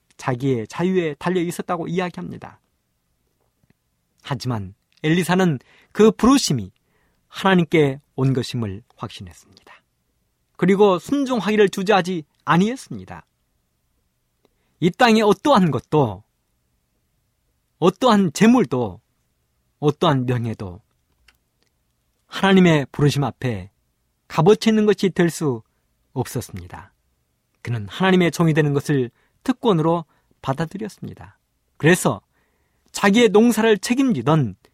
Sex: male